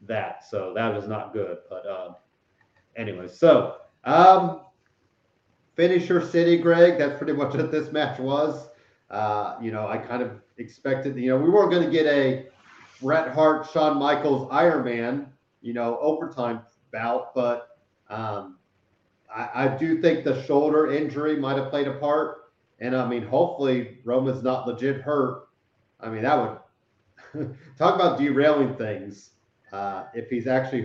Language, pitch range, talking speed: English, 120-150 Hz, 160 wpm